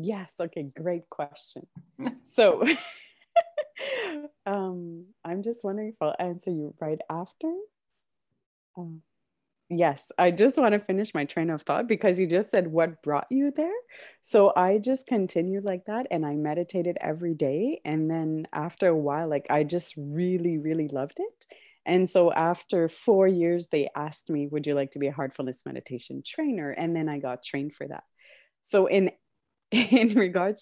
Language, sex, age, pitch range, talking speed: English, female, 30-49, 150-200 Hz, 165 wpm